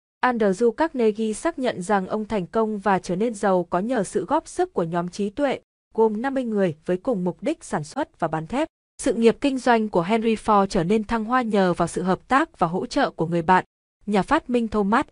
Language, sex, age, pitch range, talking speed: Vietnamese, female, 20-39, 185-245 Hz, 235 wpm